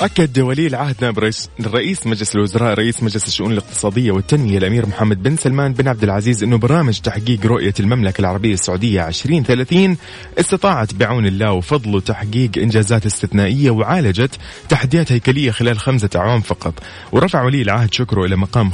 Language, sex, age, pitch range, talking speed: Arabic, male, 30-49, 100-130 Hz, 155 wpm